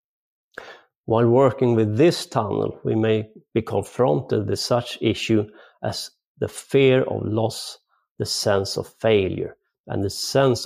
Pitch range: 105-120 Hz